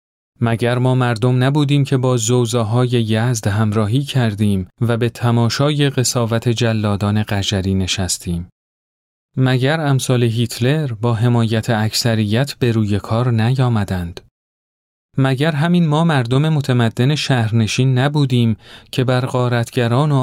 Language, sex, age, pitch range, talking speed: Persian, male, 40-59, 105-130 Hz, 115 wpm